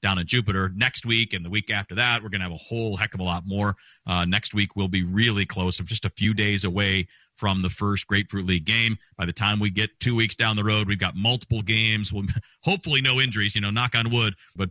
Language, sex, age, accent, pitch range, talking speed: English, male, 40-59, American, 100-120 Hz, 260 wpm